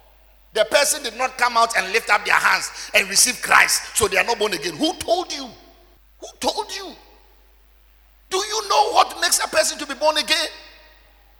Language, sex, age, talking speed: English, male, 50-69, 190 wpm